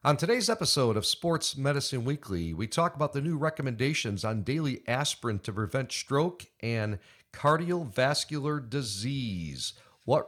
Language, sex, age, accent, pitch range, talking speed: English, male, 50-69, American, 105-145 Hz, 135 wpm